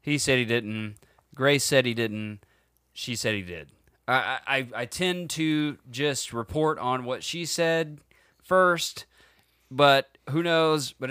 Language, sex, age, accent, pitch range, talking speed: English, male, 30-49, American, 105-145 Hz, 150 wpm